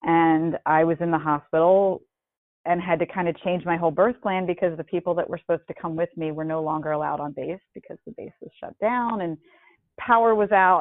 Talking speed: 235 wpm